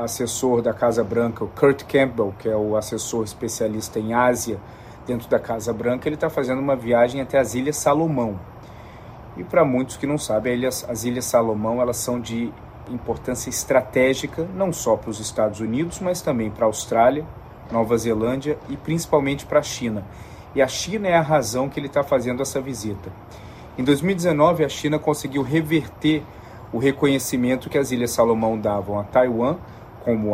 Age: 40-59